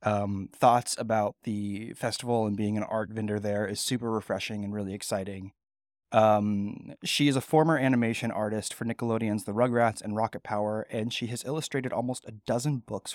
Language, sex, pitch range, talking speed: English, male, 105-125 Hz, 180 wpm